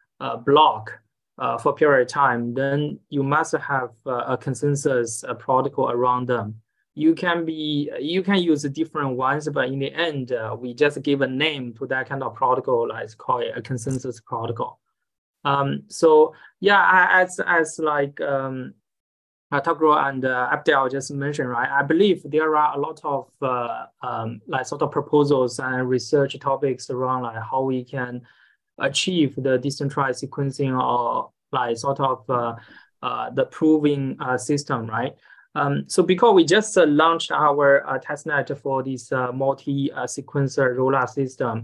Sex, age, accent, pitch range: male, 20-39, native, 130-155 Hz